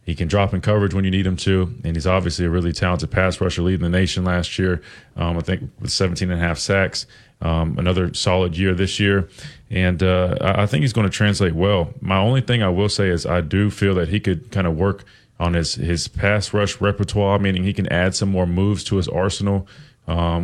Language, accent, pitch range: English, American, 90-100 Hz